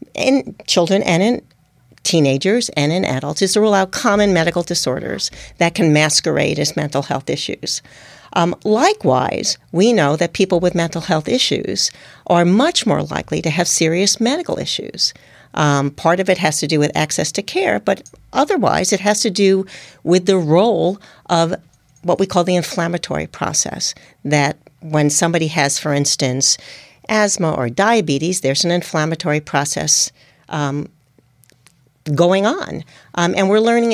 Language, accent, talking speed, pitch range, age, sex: English, American, 160 wpm, 155-210 Hz, 60-79, female